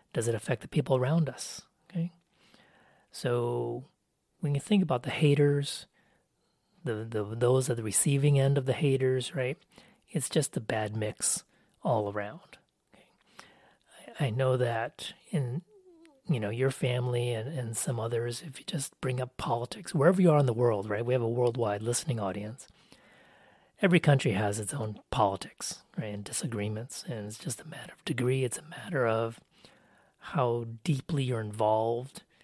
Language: English